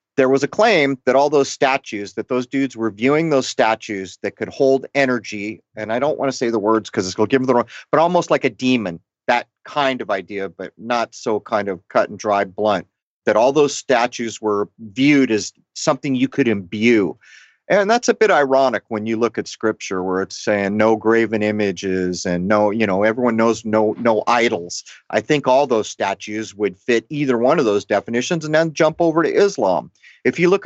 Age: 40-59